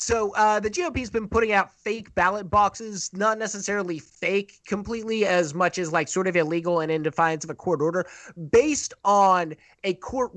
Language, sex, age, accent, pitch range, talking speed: English, male, 30-49, American, 170-210 Hz, 190 wpm